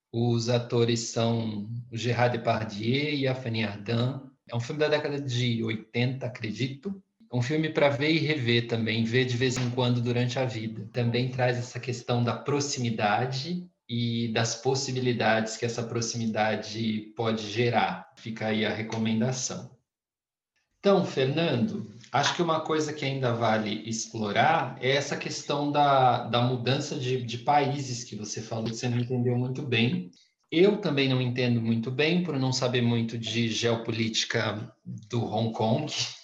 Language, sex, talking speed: Portuguese, male, 155 wpm